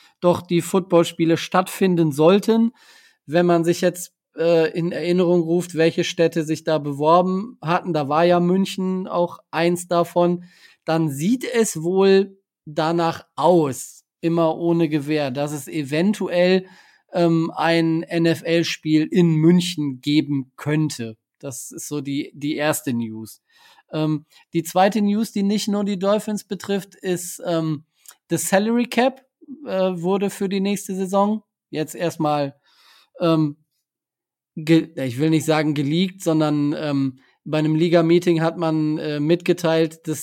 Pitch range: 155-185 Hz